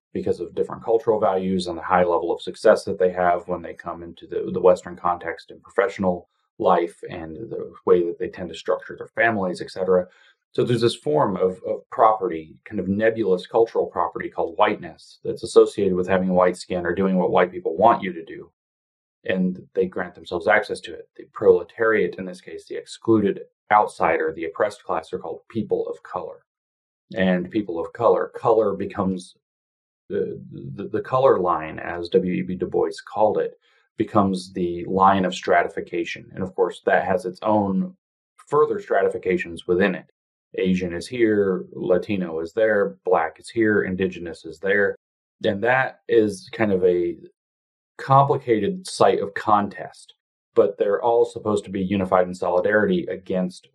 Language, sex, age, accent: English, male, 30-49, American